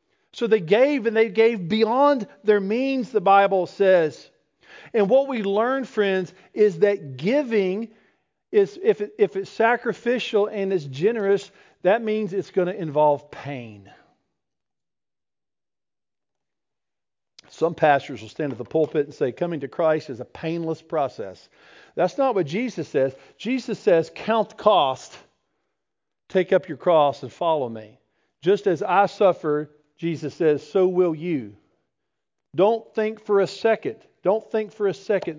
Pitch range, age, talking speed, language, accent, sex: 160-215 Hz, 50-69, 150 wpm, English, American, male